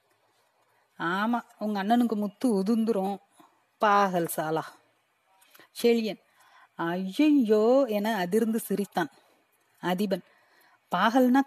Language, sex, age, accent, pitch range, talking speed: Tamil, female, 30-49, native, 190-245 Hz, 75 wpm